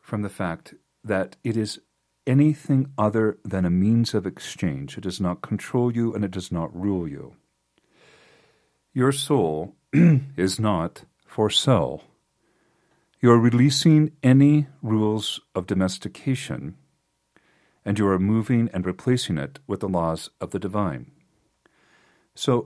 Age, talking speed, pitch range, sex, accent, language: 40-59, 135 wpm, 95-130 Hz, male, American, English